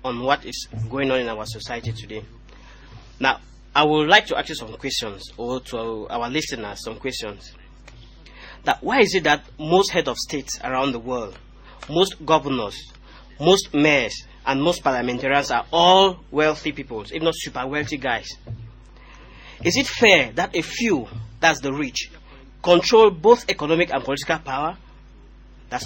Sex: male